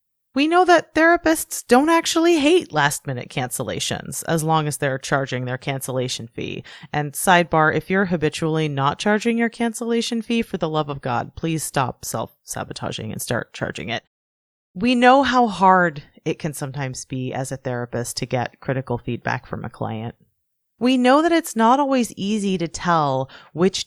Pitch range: 140-195 Hz